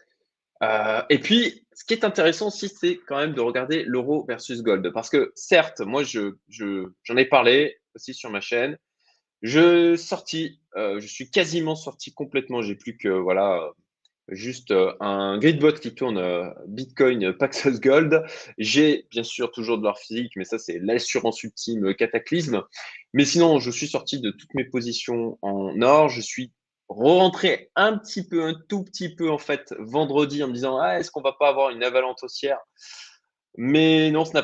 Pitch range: 115-160 Hz